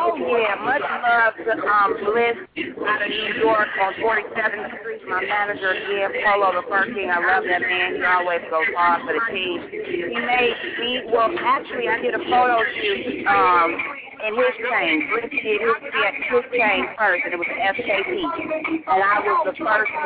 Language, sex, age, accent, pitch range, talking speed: English, female, 40-59, American, 200-320 Hz, 190 wpm